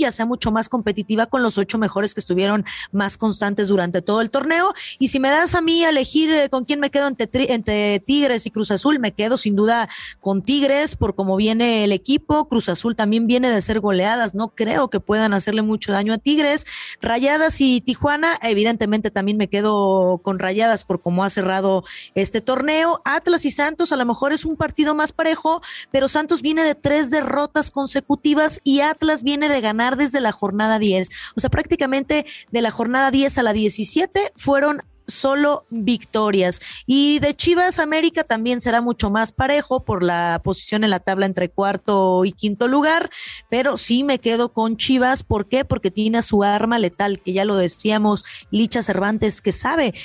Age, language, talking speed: 30-49, Spanish, 190 wpm